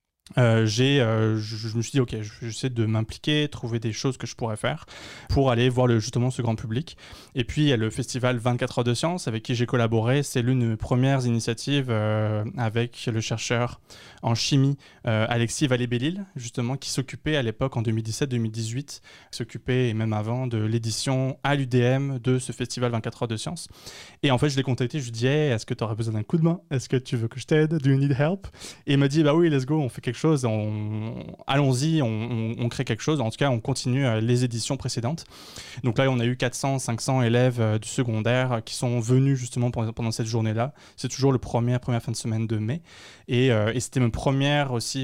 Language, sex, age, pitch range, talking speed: French, male, 20-39, 115-135 Hz, 230 wpm